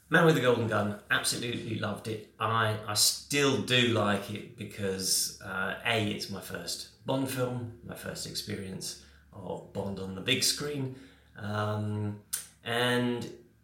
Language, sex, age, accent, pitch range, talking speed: English, male, 30-49, British, 95-120 Hz, 145 wpm